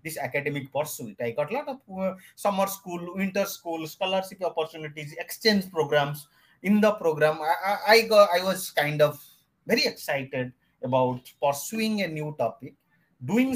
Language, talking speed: English, 160 wpm